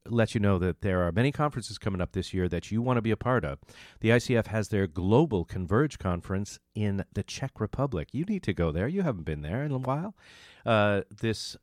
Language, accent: English, American